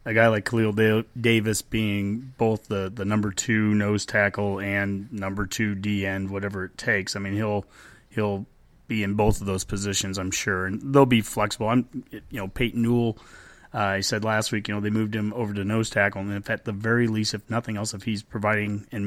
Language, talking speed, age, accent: English, 215 wpm, 30-49, American